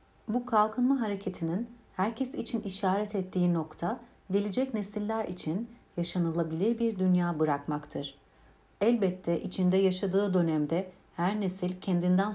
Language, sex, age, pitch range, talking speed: Turkish, female, 60-79, 165-205 Hz, 105 wpm